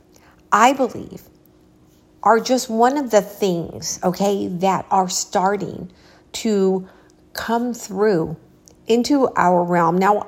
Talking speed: 110 wpm